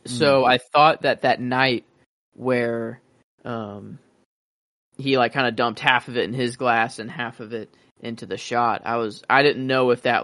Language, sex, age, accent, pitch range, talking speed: English, male, 20-39, American, 115-130 Hz, 195 wpm